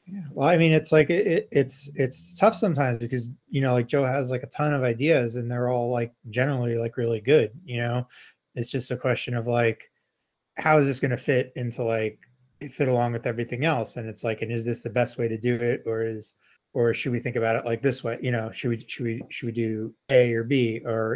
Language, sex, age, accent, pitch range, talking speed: English, male, 20-39, American, 115-130 Hz, 250 wpm